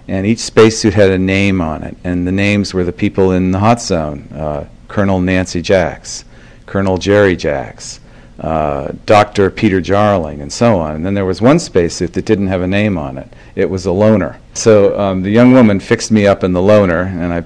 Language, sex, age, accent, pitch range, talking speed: Malayalam, male, 50-69, American, 90-105 Hz, 215 wpm